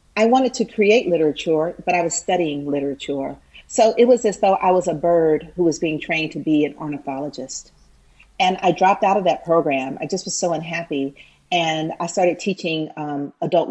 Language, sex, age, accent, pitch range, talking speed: English, female, 40-59, American, 160-200 Hz, 195 wpm